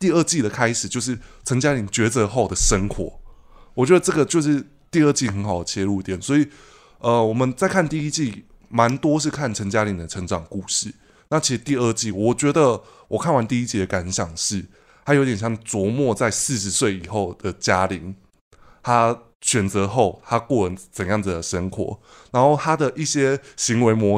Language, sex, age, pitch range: Chinese, male, 20-39, 95-130 Hz